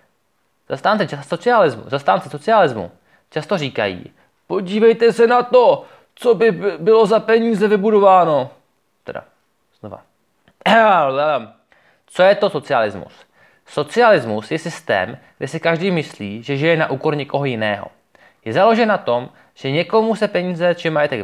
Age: 20-39